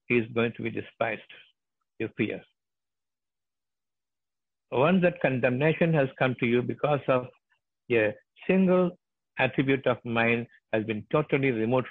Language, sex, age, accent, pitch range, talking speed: Tamil, male, 60-79, native, 110-150 Hz, 125 wpm